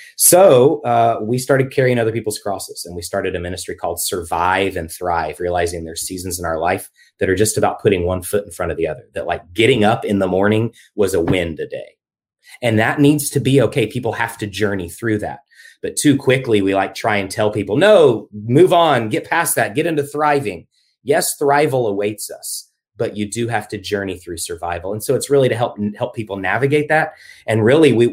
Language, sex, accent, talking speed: English, male, American, 220 wpm